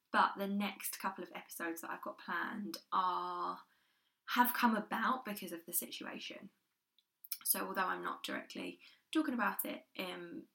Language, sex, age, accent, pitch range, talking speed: English, female, 10-29, British, 180-230 Hz, 155 wpm